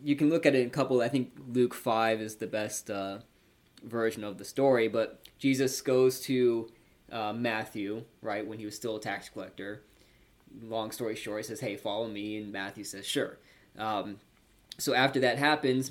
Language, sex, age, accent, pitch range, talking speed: English, male, 20-39, American, 110-130 Hz, 190 wpm